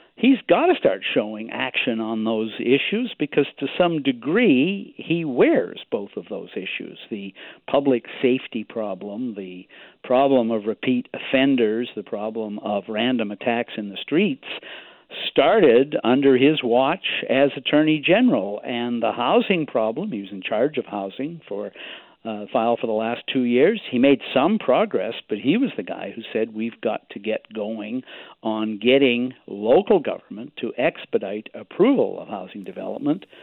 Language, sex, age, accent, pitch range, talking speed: English, male, 50-69, American, 110-150 Hz, 155 wpm